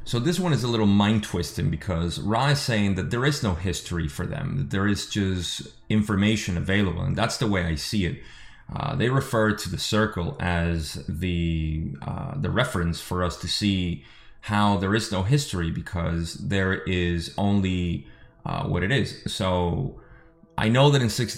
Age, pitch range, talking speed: 30-49, 90-110 Hz, 180 wpm